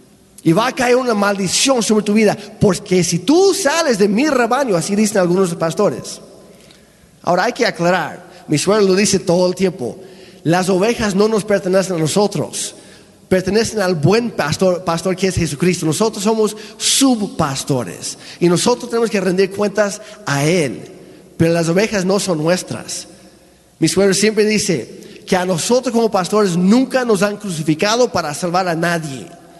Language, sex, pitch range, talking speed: Spanish, male, 180-225 Hz, 160 wpm